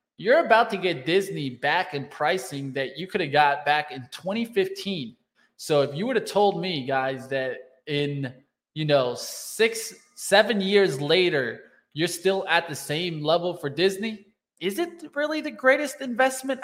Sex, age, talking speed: male, 20-39, 165 wpm